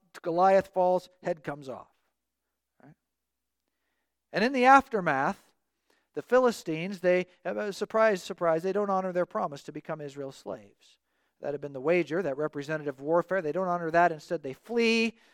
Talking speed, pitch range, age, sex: 155 wpm, 160-225 Hz, 40-59, male